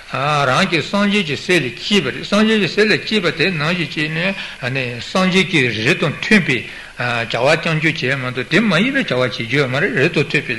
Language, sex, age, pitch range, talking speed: Italian, male, 60-79, 135-175 Hz, 170 wpm